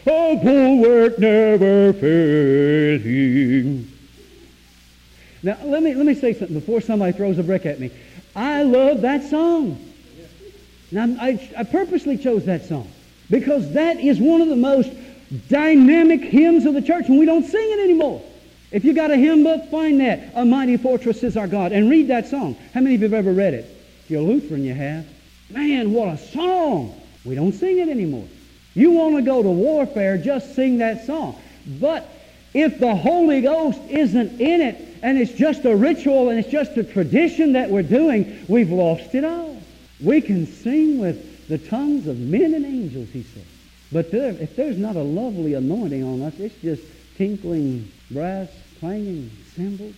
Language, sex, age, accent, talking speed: English, male, 50-69, American, 180 wpm